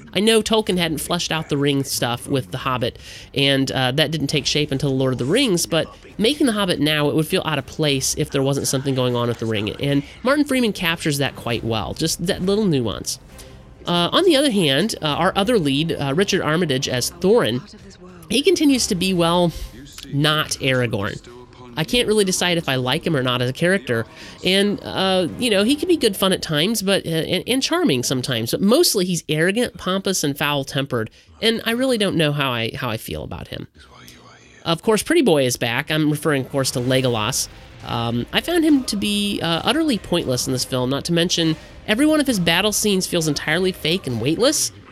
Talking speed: 215 wpm